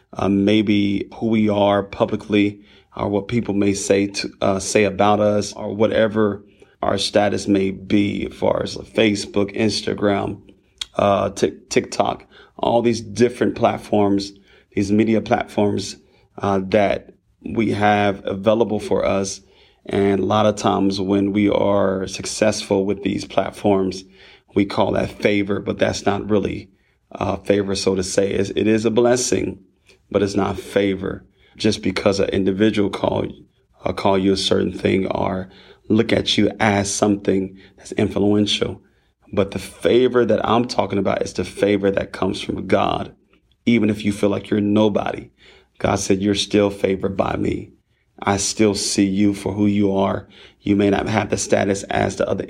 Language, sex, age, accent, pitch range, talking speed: English, male, 30-49, American, 100-105 Hz, 160 wpm